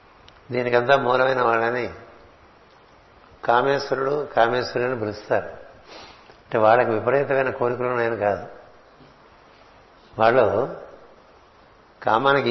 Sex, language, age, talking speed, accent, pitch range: male, Telugu, 60-79, 70 wpm, native, 120-135 Hz